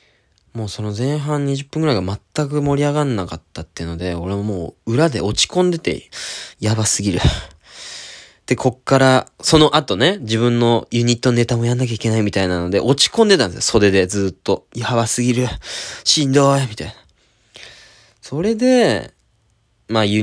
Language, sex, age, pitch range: Japanese, male, 20-39, 100-150 Hz